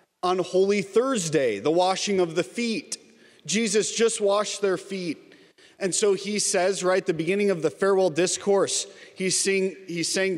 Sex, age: male, 30-49